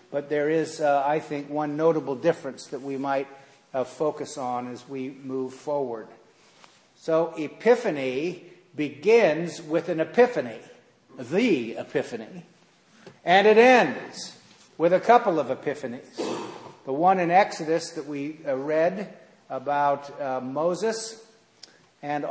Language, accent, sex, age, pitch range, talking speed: English, American, male, 50-69, 140-180 Hz, 125 wpm